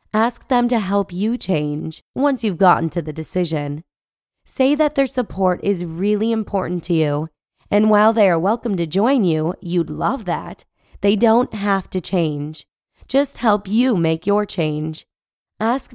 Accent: American